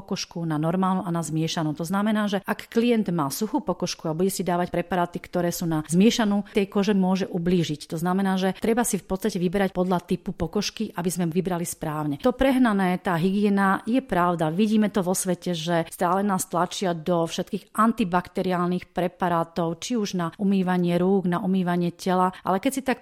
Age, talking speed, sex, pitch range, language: 40-59, 190 wpm, female, 175-205 Hz, Slovak